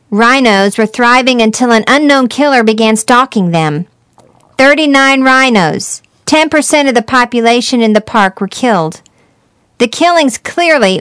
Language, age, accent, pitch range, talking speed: English, 50-69, American, 215-260 Hz, 130 wpm